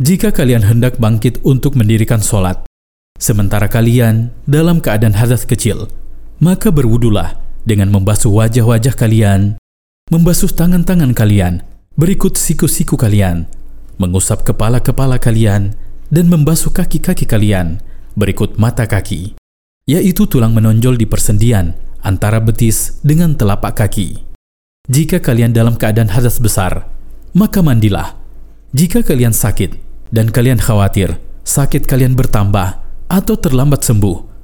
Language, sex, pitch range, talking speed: Indonesian, male, 100-135 Hz, 115 wpm